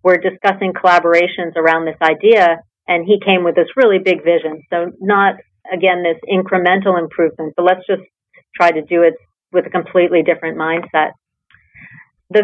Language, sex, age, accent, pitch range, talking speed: English, female, 40-59, American, 165-185 Hz, 160 wpm